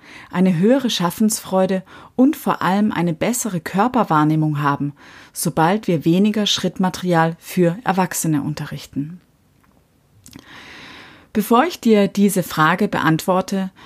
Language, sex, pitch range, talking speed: German, female, 160-215 Hz, 100 wpm